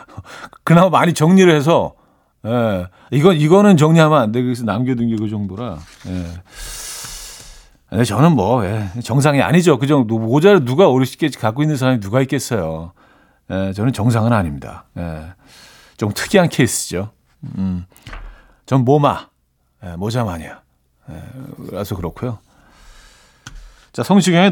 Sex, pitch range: male, 105-150 Hz